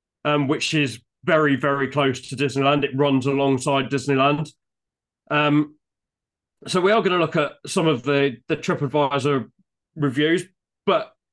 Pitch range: 140-190 Hz